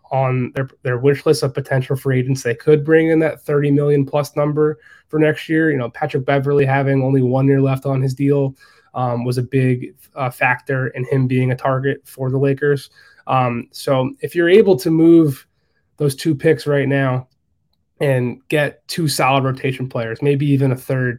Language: English